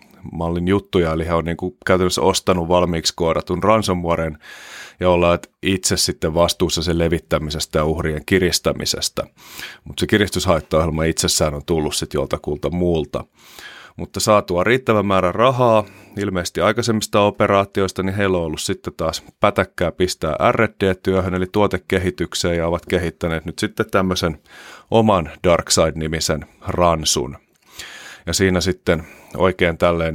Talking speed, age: 125 wpm, 30-49